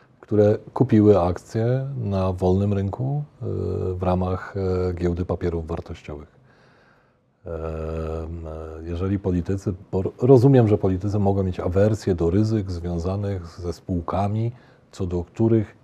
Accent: native